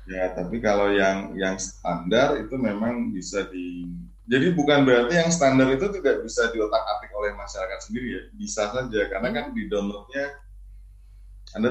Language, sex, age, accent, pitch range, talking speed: Indonesian, male, 20-39, native, 95-120 Hz, 150 wpm